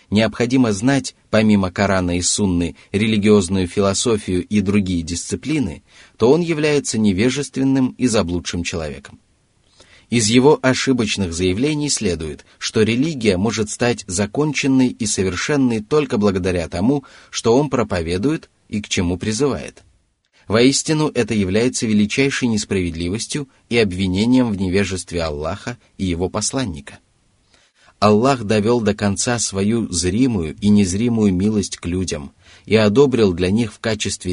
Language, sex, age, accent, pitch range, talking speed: Russian, male, 30-49, native, 95-120 Hz, 120 wpm